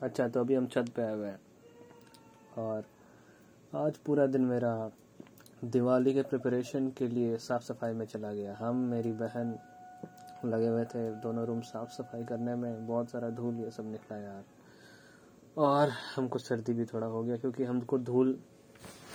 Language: Hindi